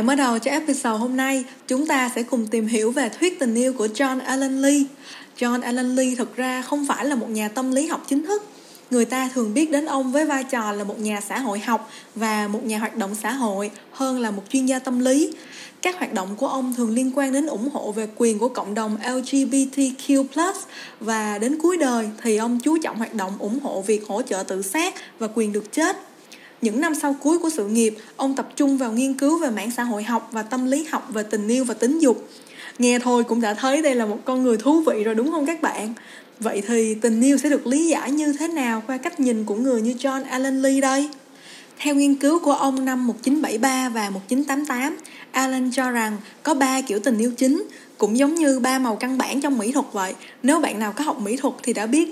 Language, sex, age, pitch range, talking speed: Vietnamese, female, 20-39, 230-280 Hz, 240 wpm